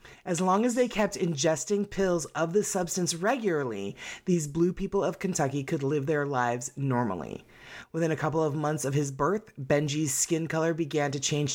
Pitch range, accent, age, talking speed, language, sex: 140-180 Hz, American, 30-49, 180 wpm, English, female